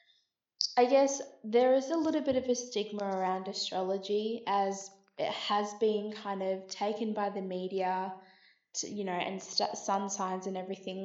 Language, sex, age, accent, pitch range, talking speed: English, female, 20-39, Australian, 190-230 Hz, 160 wpm